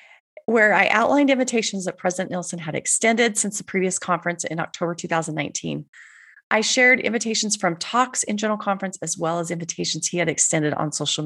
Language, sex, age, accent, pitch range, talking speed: English, female, 30-49, American, 165-230 Hz, 175 wpm